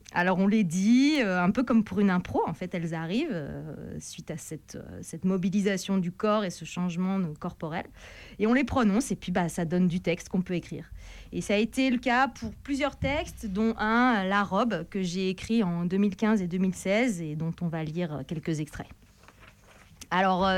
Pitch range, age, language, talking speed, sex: 175-230 Hz, 30-49, French, 205 wpm, female